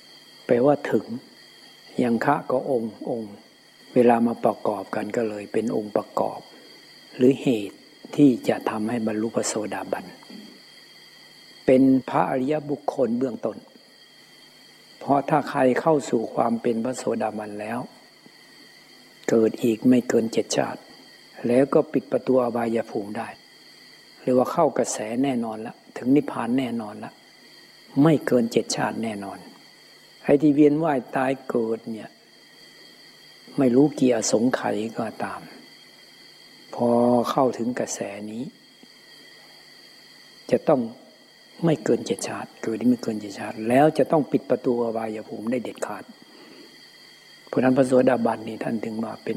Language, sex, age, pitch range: Thai, male, 60-79, 115-135 Hz